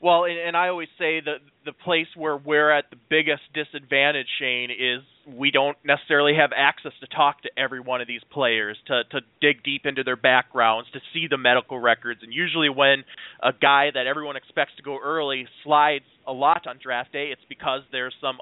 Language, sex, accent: English, male, American